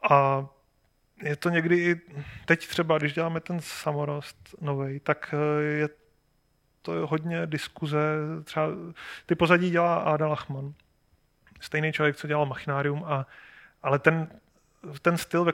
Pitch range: 140-160 Hz